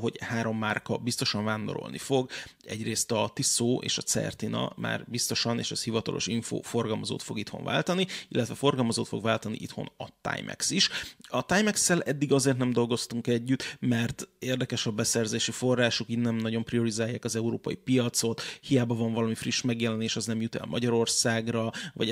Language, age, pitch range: Hungarian, 30-49, 115-125 Hz